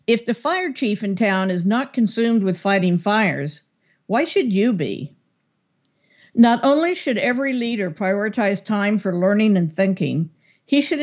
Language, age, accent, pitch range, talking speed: English, 50-69, American, 180-235 Hz, 160 wpm